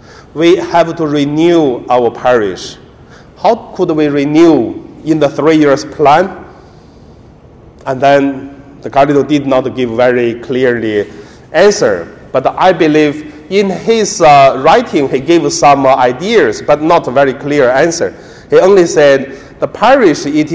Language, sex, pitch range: Chinese, male, 130-175 Hz